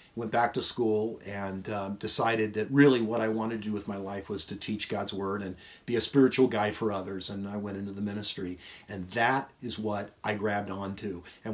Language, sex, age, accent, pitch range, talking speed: English, male, 40-59, American, 105-140 Hz, 230 wpm